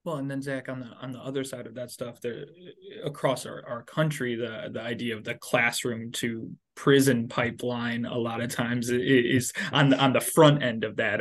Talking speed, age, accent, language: 210 wpm, 20-39, American, English